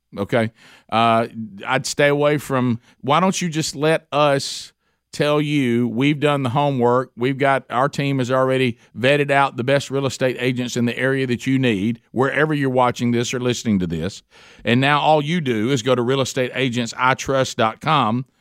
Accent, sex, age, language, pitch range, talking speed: American, male, 50-69, English, 125-150 Hz, 175 wpm